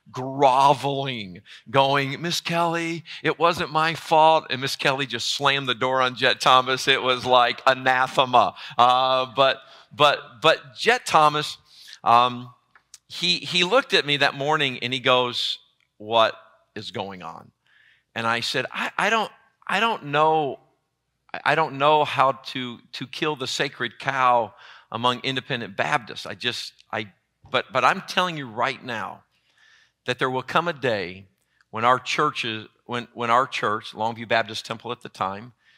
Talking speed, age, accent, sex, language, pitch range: 160 wpm, 50-69, American, male, English, 115-145 Hz